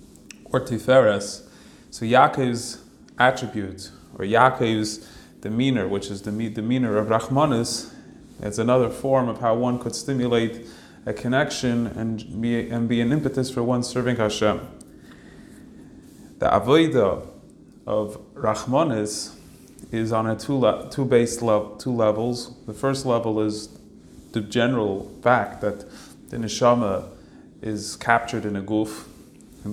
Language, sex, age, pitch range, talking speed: English, male, 30-49, 105-125 Hz, 125 wpm